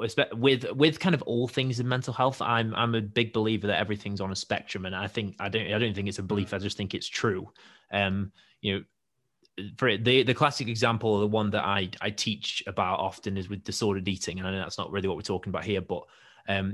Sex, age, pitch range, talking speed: male, 20-39, 100-120 Hz, 245 wpm